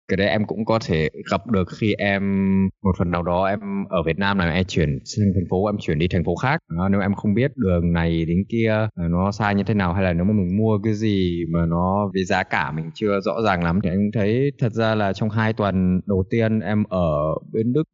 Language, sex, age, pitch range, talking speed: Vietnamese, male, 20-39, 95-110 Hz, 255 wpm